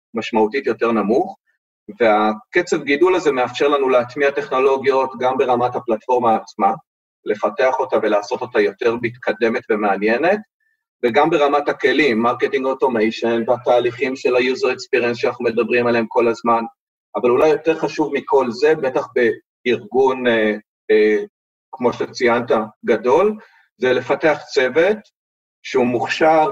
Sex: male